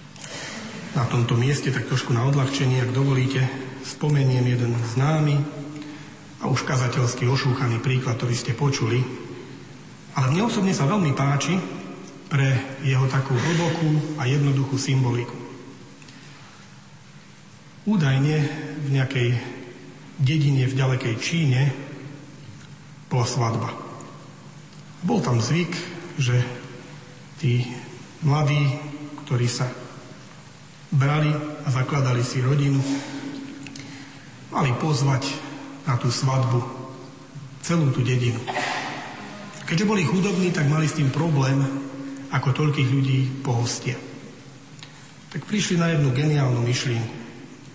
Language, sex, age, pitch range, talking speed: Slovak, male, 40-59, 130-150 Hz, 105 wpm